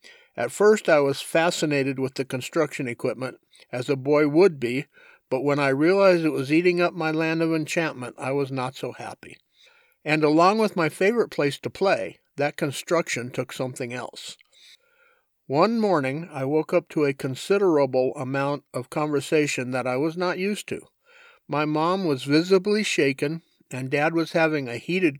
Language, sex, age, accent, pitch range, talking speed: English, male, 50-69, American, 140-195 Hz, 170 wpm